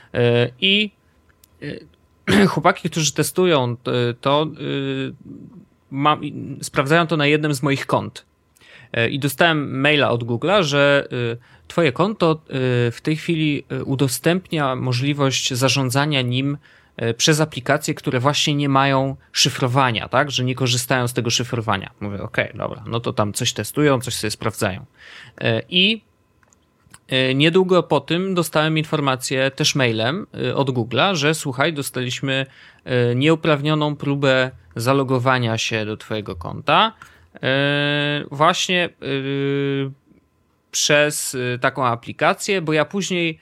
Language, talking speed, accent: Polish, 110 wpm, native